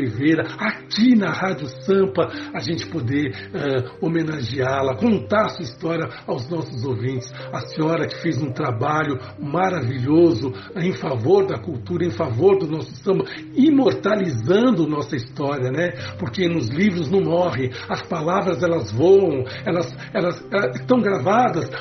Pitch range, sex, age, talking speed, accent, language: 130-175 Hz, male, 60-79, 145 wpm, Brazilian, Portuguese